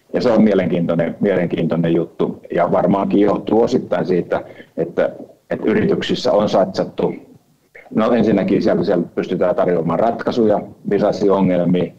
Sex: male